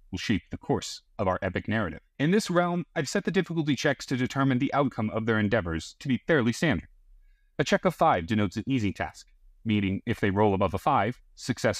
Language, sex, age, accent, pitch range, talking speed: English, male, 30-49, American, 105-170 Hz, 220 wpm